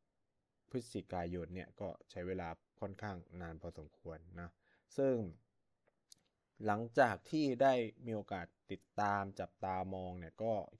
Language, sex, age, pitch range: Thai, male, 20-39, 95-120 Hz